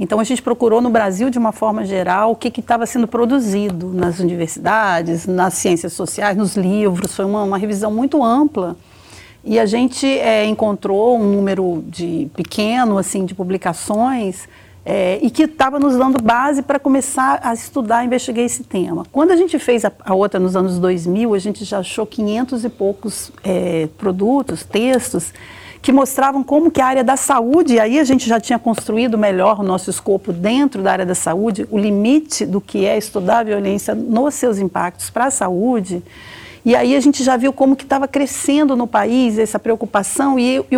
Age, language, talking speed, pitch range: 40-59, Portuguese, 190 wpm, 195-260 Hz